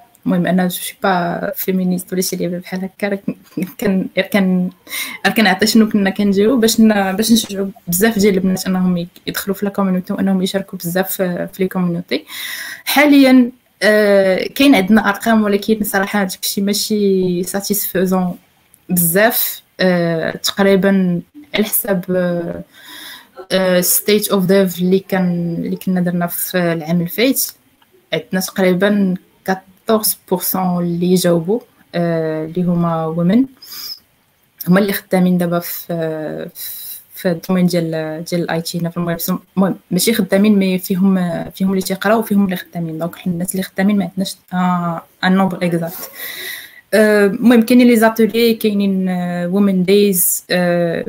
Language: Arabic